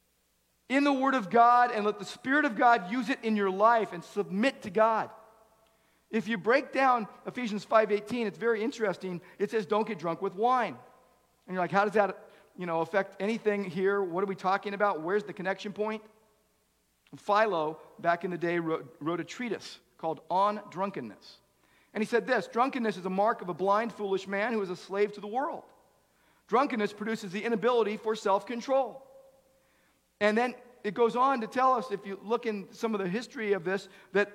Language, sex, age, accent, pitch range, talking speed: English, male, 50-69, American, 200-245 Hz, 195 wpm